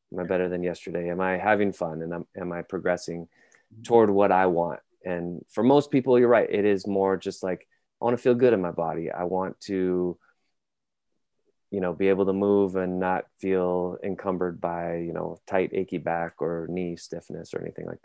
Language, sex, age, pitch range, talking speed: English, male, 20-39, 90-105 Hz, 205 wpm